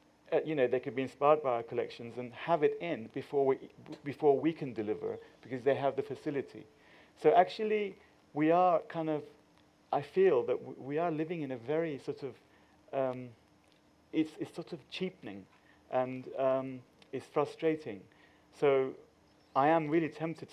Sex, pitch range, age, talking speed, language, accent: male, 125-150 Hz, 40-59, 170 wpm, English, British